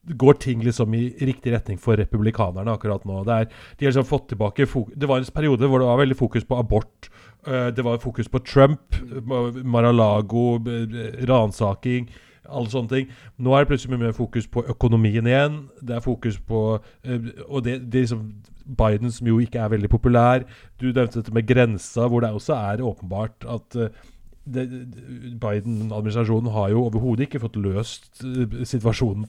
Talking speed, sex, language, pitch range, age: 175 wpm, male, English, 110-125 Hz, 30-49